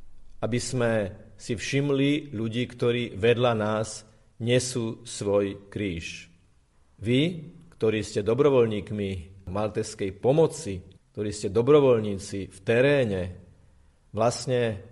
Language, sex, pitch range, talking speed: Slovak, male, 100-125 Hz, 95 wpm